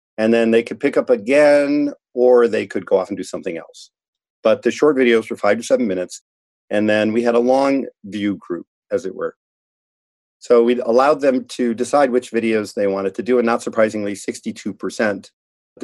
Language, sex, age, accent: English, male, 50-69, American